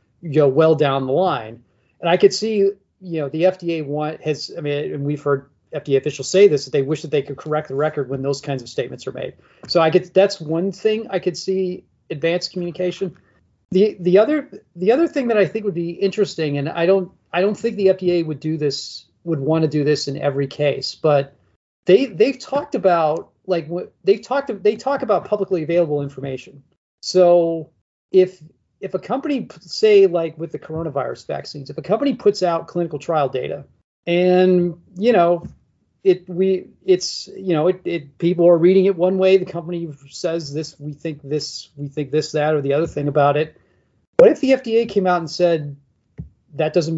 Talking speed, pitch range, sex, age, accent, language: 205 wpm, 145-190 Hz, male, 40-59, American, English